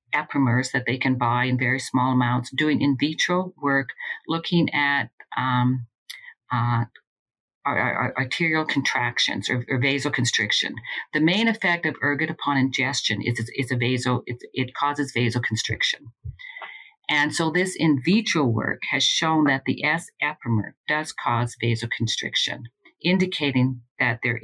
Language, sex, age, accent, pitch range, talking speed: English, female, 50-69, American, 125-160 Hz, 135 wpm